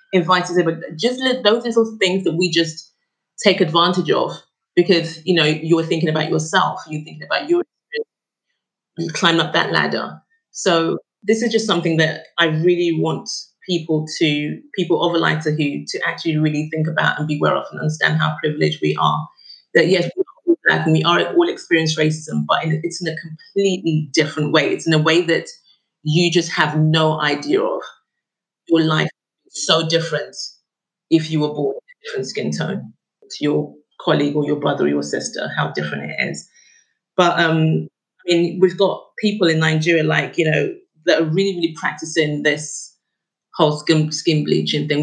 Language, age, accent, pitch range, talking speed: English, 30-49, British, 155-190 Hz, 185 wpm